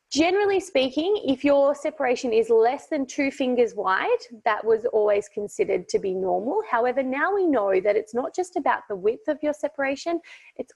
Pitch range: 220-355 Hz